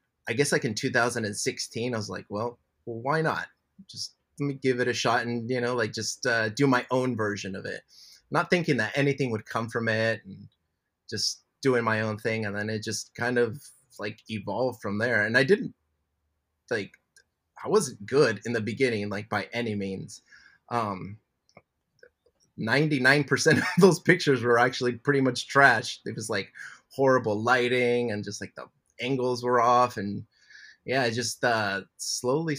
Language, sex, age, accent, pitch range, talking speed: English, male, 20-39, American, 110-135 Hz, 180 wpm